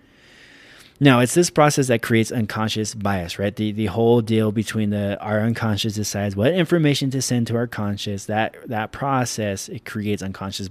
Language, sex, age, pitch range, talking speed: English, male, 20-39, 110-140 Hz, 175 wpm